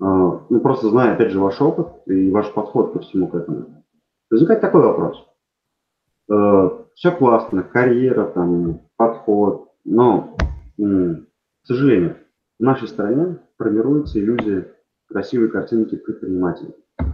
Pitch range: 110-155 Hz